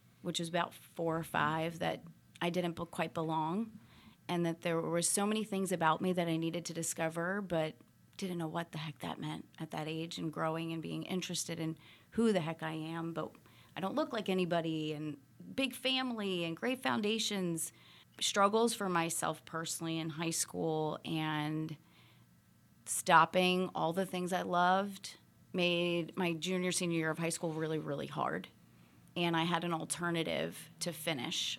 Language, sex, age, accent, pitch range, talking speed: English, female, 30-49, American, 160-185 Hz, 175 wpm